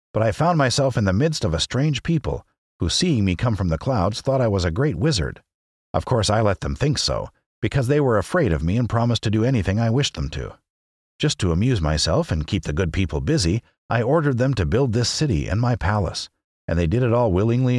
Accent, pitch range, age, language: American, 85-130 Hz, 50-69, English